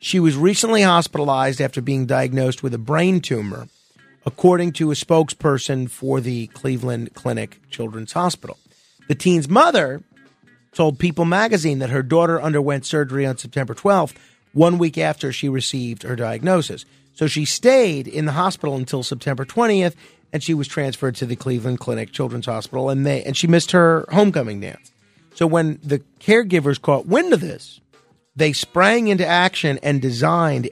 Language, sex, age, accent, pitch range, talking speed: English, male, 40-59, American, 130-175 Hz, 160 wpm